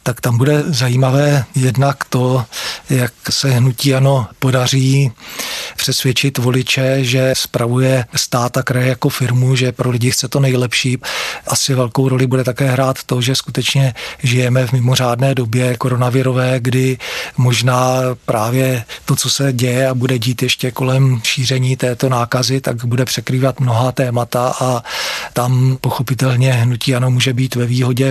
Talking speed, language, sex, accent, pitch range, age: 145 wpm, Czech, male, native, 125-135 Hz, 40-59